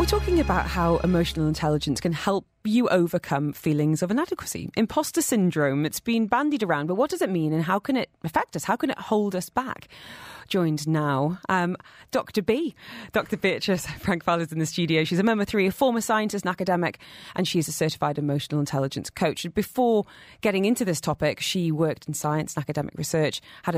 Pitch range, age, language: 155-220 Hz, 30-49, English